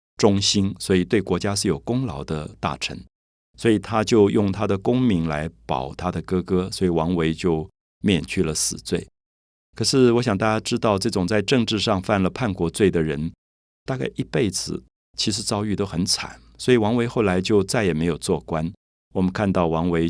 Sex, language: male, Chinese